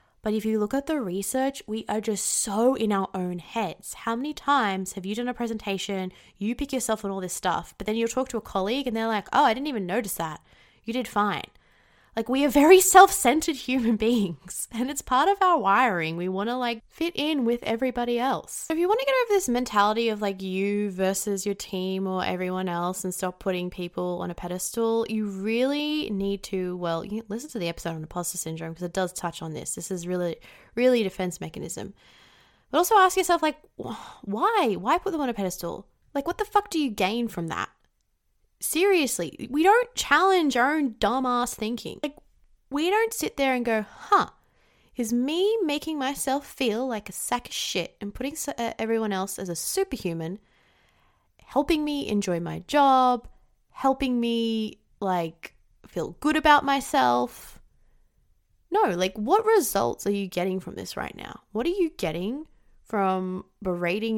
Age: 20-39